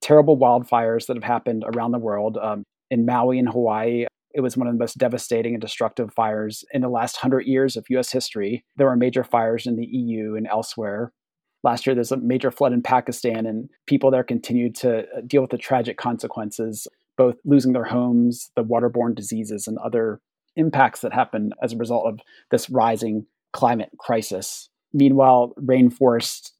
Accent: American